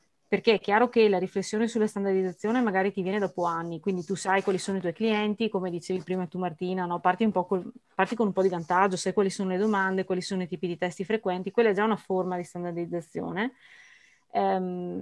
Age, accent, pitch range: 30-49, native, 185-220 Hz